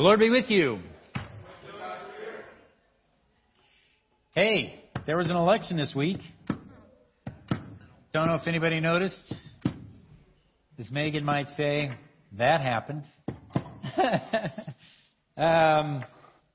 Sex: male